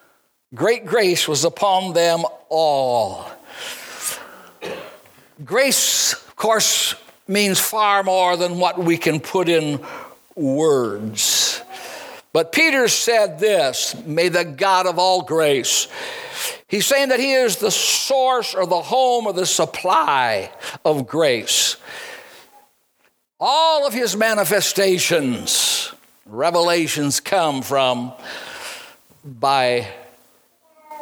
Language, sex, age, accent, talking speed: English, male, 60-79, American, 100 wpm